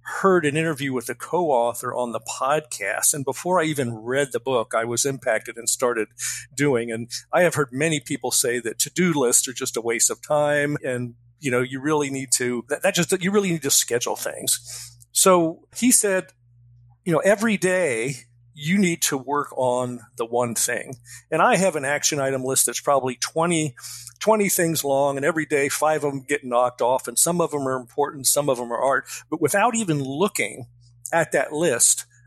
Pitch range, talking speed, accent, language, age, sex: 125-165 Hz, 205 wpm, American, English, 50-69, male